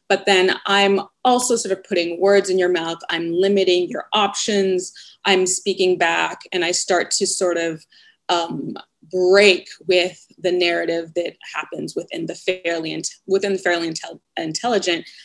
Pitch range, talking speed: 180-225 Hz, 155 wpm